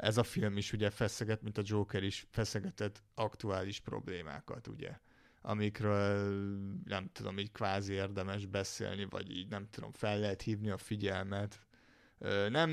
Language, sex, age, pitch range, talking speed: Hungarian, male, 30-49, 100-115 Hz, 145 wpm